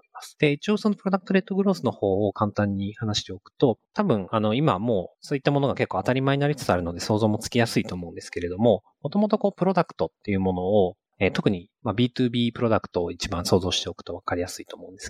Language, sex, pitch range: Japanese, male, 95-155 Hz